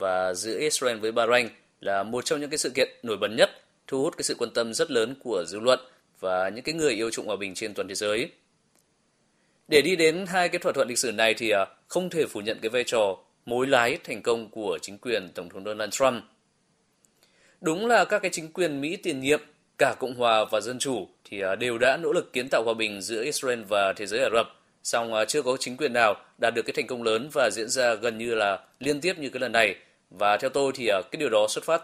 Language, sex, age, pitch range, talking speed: Vietnamese, male, 20-39, 110-160 Hz, 245 wpm